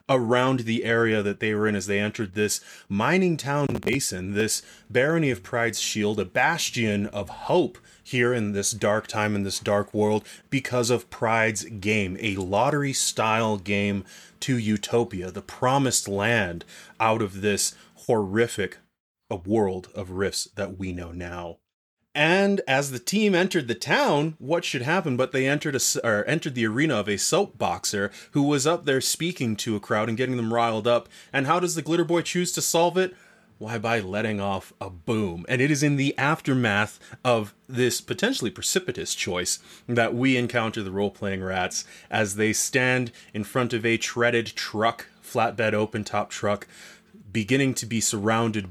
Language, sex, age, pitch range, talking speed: English, male, 30-49, 105-130 Hz, 170 wpm